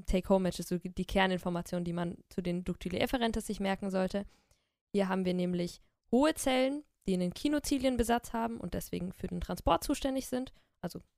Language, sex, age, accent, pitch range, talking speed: German, female, 20-39, German, 175-210 Hz, 170 wpm